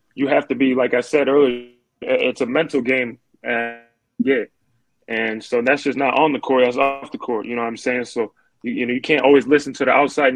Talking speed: 230 wpm